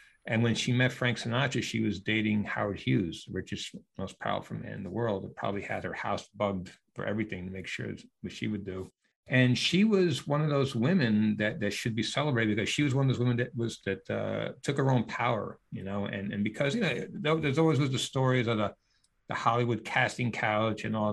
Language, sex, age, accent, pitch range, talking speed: English, male, 60-79, American, 105-120 Hz, 235 wpm